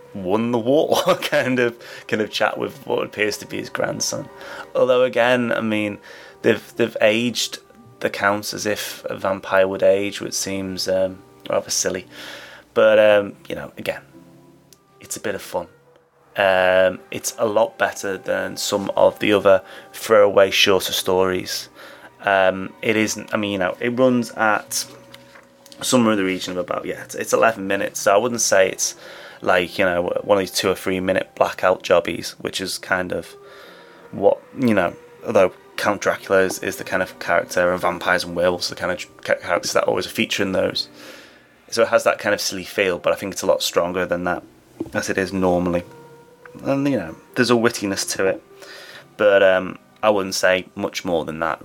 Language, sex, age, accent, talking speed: English, male, 20-39, British, 190 wpm